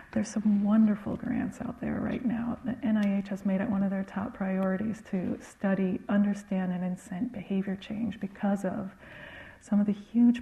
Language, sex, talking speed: English, female, 180 wpm